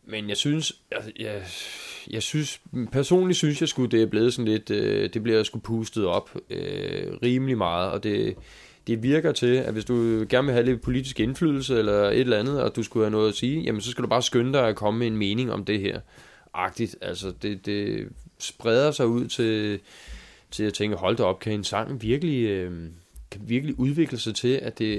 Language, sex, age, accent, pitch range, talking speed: Danish, male, 20-39, native, 100-120 Hz, 220 wpm